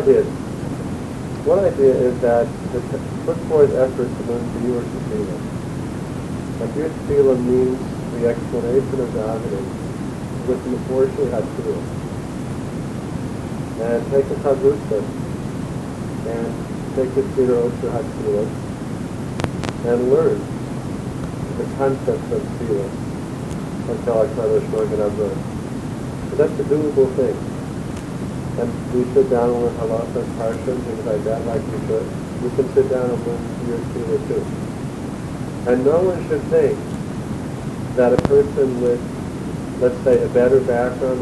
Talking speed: 145 wpm